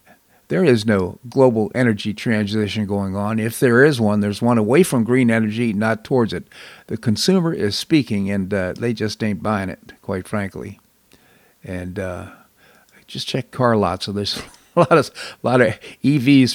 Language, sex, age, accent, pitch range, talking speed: English, male, 50-69, American, 105-130 Hz, 180 wpm